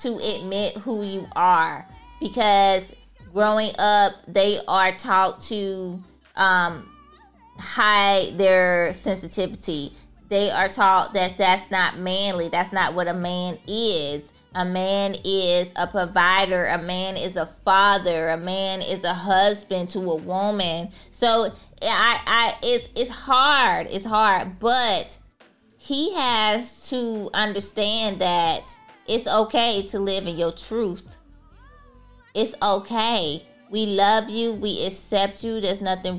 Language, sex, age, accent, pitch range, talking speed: English, female, 20-39, American, 185-220 Hz, 130 wpm